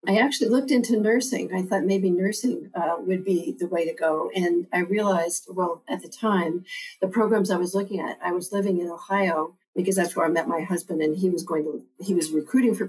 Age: 50-69